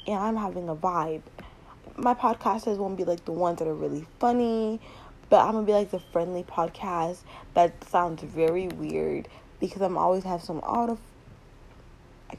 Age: 20-39